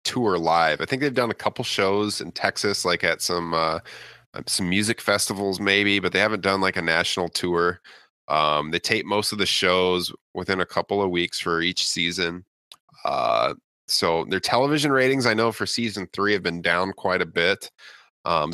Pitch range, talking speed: 90-115 Hz, 190 wpm